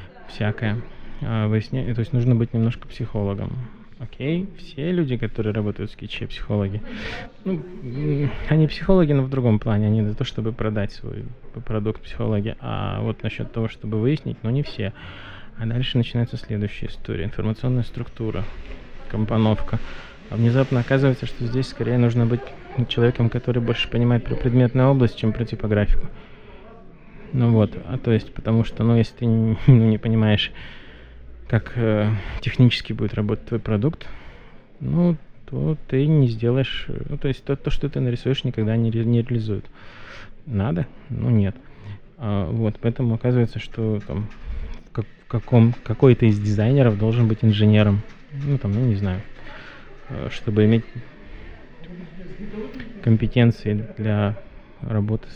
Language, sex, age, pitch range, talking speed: Russian, male, 20-39, 110-130 Hz, 135 wpm